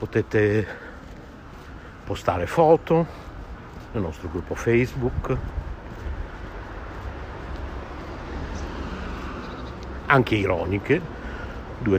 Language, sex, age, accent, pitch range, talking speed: Italian, male, 60-79, native, 80-110 Hz, 50 wpm